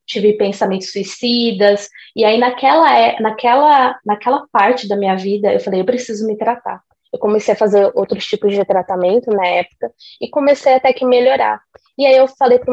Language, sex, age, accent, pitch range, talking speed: Portuguese, female, 20-39, Brazilian, 200-255 Hz, 180 wpm